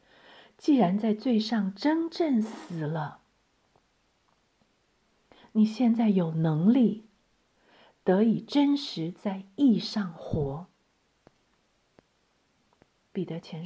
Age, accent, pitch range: 50-69, native, 165-215 Hz